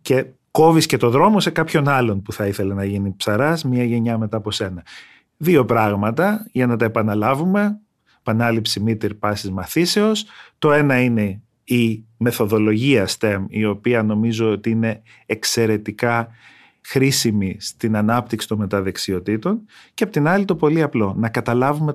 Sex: male